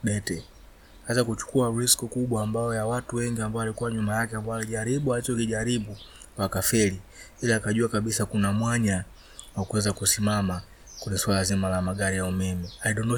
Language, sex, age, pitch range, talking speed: Swahili, male, 20-39, 100-120 Hz, 155 wpm